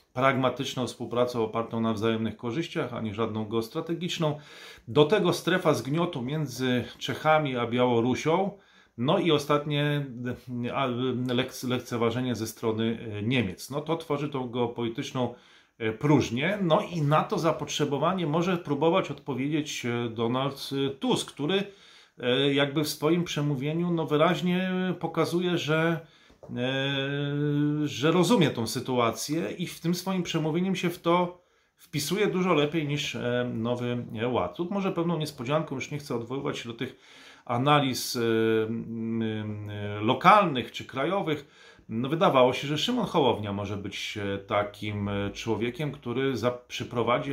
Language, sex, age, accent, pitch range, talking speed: Polish, male, 40-59, native, 120-155 Hz, 120 wpm